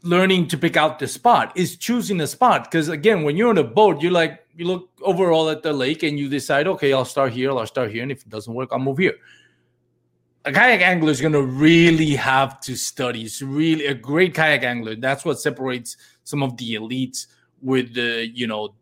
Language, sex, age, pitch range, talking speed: English, male, 30-49, 120-160 Hz, 225 wpm